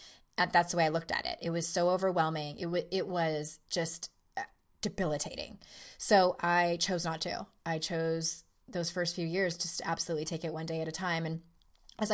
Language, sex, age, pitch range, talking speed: English, female, 20-39, 170-220 Hz, 195 wpm